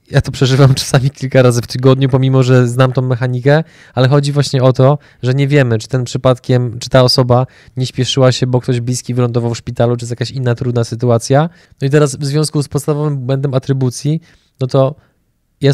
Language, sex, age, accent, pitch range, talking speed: Polish, male, 20-39, native, 125-145 Hz, 205 wpm